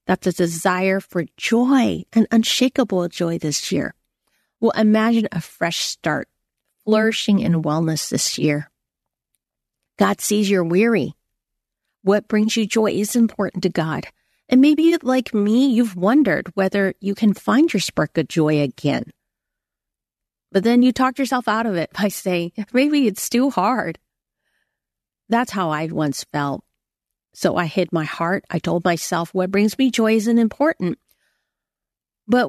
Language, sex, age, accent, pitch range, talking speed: English, female, 40-59, American, 160-225 Hz, 150 wpm